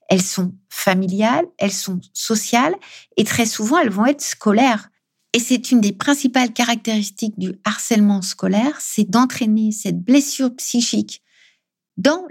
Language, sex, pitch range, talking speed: French, female, 190-230 Hz, 135 wpm